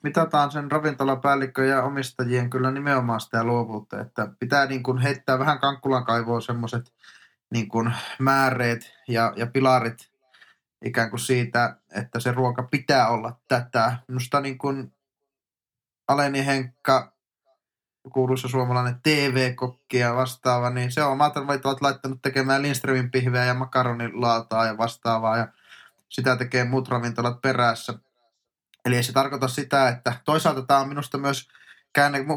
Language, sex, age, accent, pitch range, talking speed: Finnish, male, 20-39, native, 115-135 Hz, 130 wpm